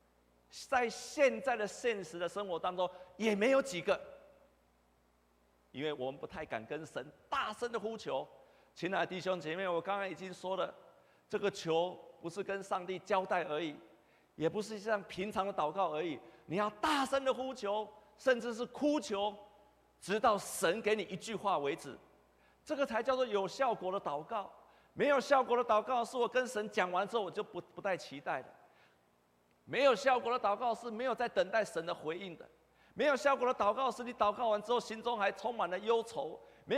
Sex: male